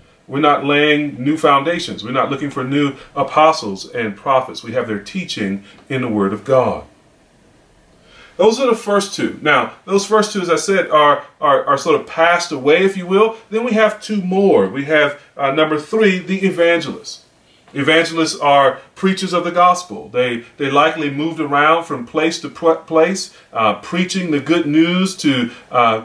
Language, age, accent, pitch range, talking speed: English, 30-49, American, 140-175 Hz, 180 wpm